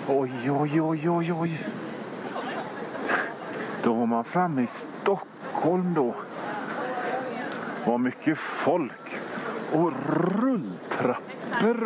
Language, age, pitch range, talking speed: Swedish, 40-59, 115-175 Hz, 80 wpm